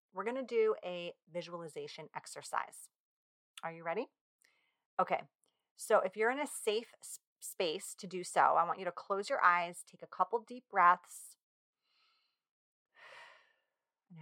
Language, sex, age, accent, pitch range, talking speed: English, female, 30-49, American, 160-205 Hz, 145 wpm